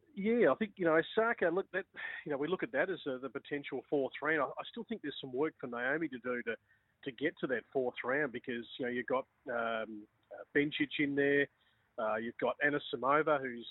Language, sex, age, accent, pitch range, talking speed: English, male, 40-59, Australian, 130-150 Hz, 230 wpm